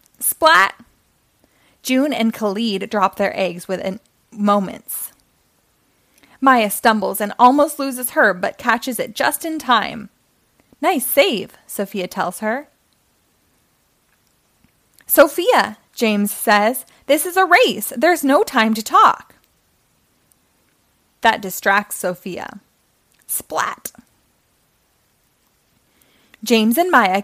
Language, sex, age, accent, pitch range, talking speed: English, female, 20-39, American, 200-260 Hz, 100 wpm